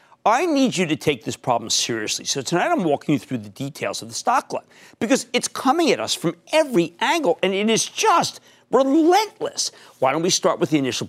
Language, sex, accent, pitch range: English, male, American, 130-190 Hz